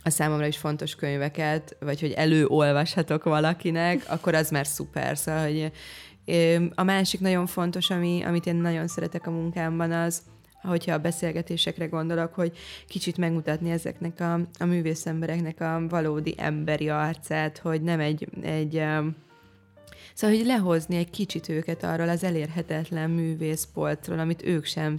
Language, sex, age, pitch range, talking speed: Hungarian, female, 20-39, 155-170 Hz, 140 wpm